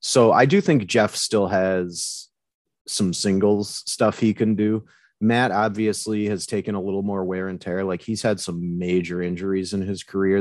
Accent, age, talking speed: American, 30-49, 185 wpm